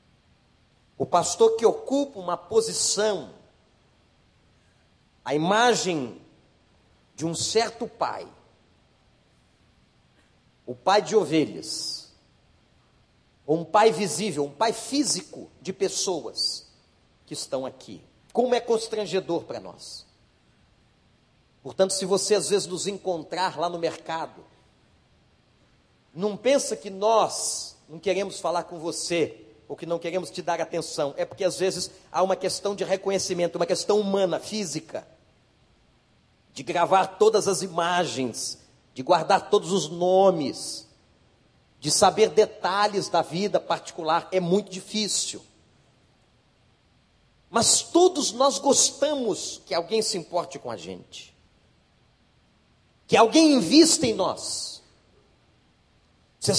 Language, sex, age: Portuguese, male, 50-69